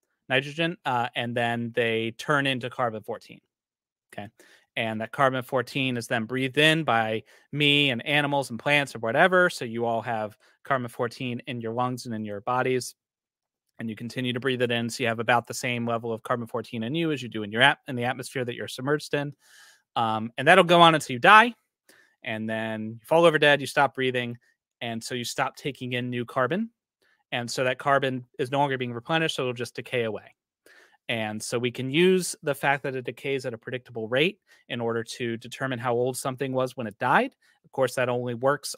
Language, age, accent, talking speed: English, 30-49, American, 210 wpm